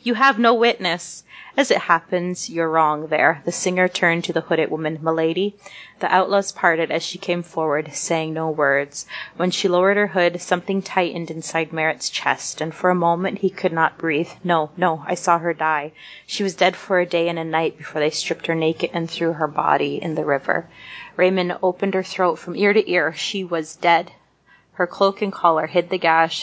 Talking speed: 205 wpm